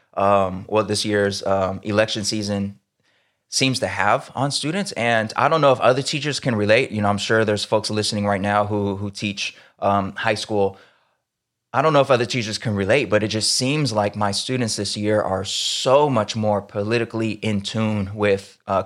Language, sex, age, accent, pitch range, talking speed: English, male, 20-39, American, 100-110 Hz, 200 wpm